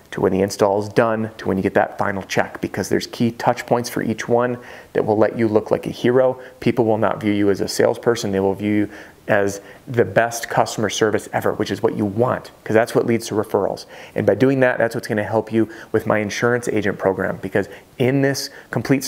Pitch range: 105-135 Hz